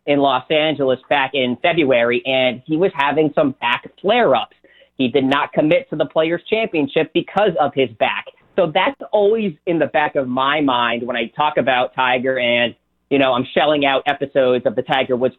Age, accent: 30-49, American